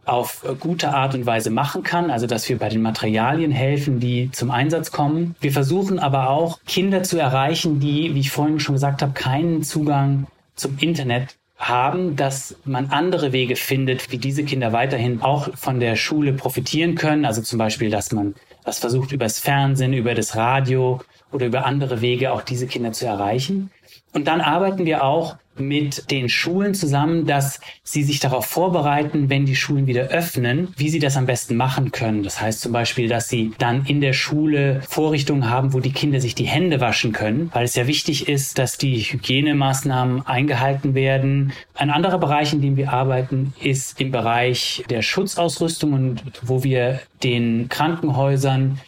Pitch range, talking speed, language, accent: 125-150 Hz, 180 wpm, German, German